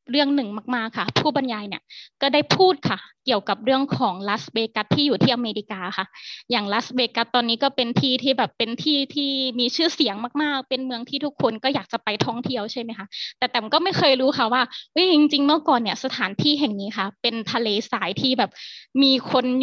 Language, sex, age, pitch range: Thai, female, 20-39, 220-265 Hz